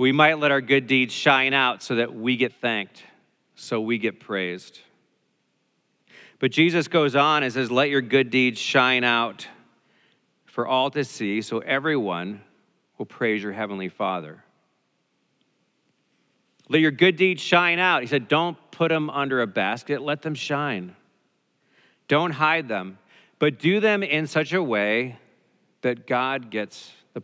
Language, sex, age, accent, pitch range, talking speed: English, male, 40-59, American, 115-150 Hz, 155 wpm